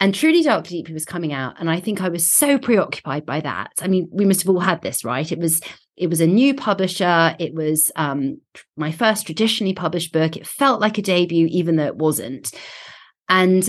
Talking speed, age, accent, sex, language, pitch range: 220 wpm, 30-49, British, female, English, 175-240 Hz